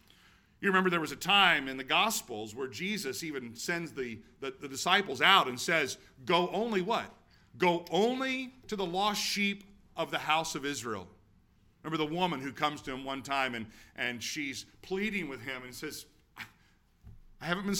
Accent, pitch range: American, 115-185 Hz